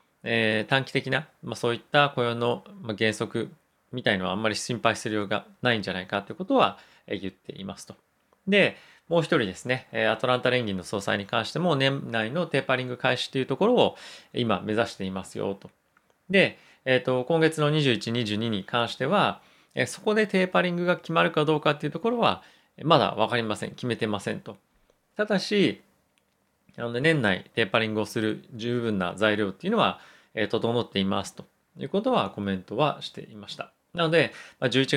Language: Japanese